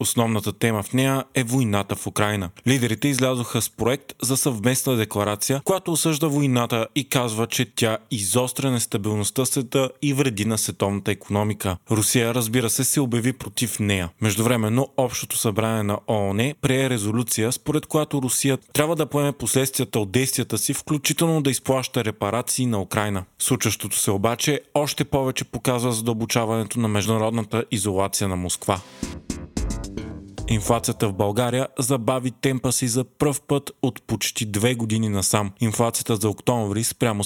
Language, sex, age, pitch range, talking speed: Bulgarian, male, 30-49, 110-130 Hz, 150 wpm